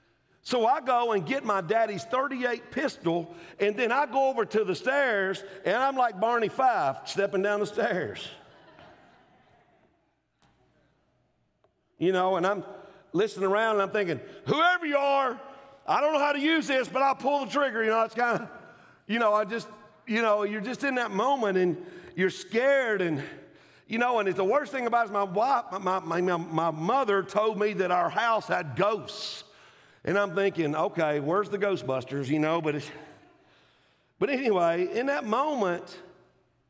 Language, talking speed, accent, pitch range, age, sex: English, 175 wpm, American, 155-230 Hz, 50-69, male